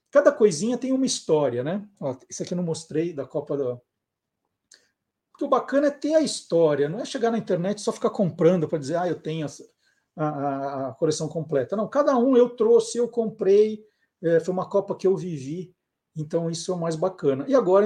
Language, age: Portuguese, 50-69